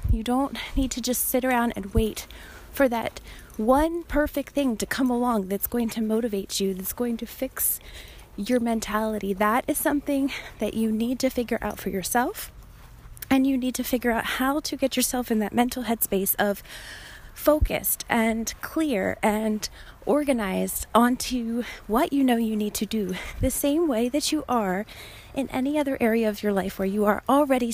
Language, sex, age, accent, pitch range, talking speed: English, female, 30-49, American, 225-285 Hz, 180 wpm